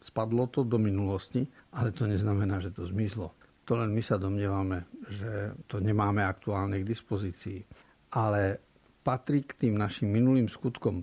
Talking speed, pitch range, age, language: 150 wpm, 100-125 Hz, 50-69, Slovak